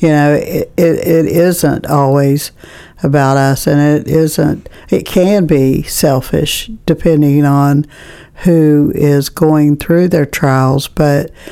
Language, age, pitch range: English, 60-79, 145-165 Hz